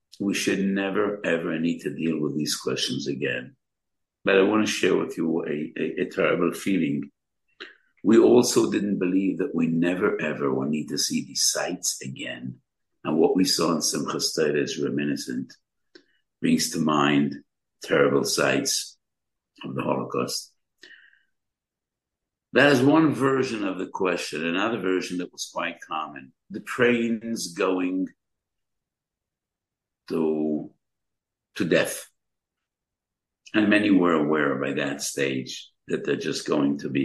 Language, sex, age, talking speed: English, male, 60-79, 140 wpm